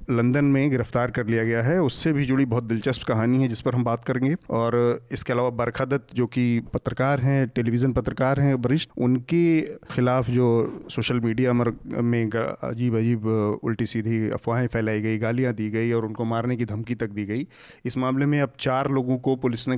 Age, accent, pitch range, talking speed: 30-49, native, 115-130 Hz, 195 wpm